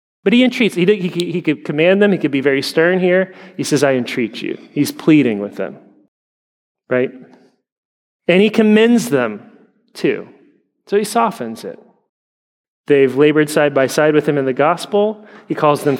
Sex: male